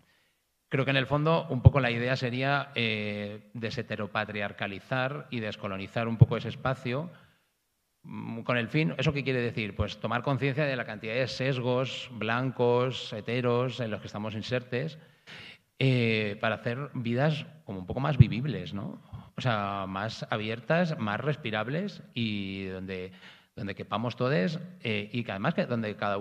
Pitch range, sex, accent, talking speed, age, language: 110-135 Hz, male, Spanish, 155 wpm, 30-49, Spanish